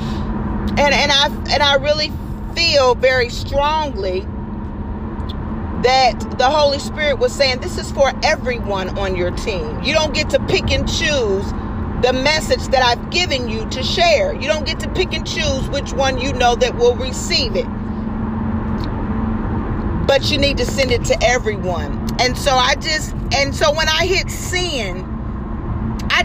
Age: 40-59